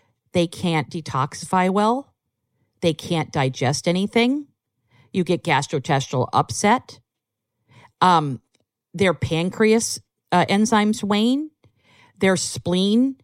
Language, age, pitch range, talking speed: English, 50-69, 155-220 Hz, 90 wpm